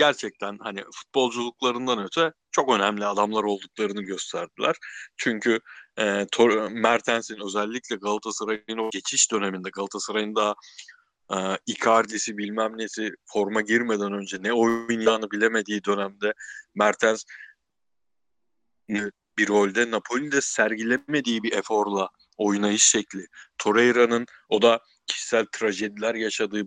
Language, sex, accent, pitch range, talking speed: Turkish, male, native, 100-120 Hz, 105 wpm